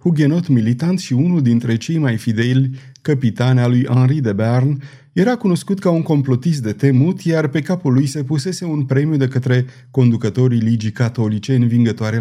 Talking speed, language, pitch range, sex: 165 wpm, Romanian, 120-155 Hz, male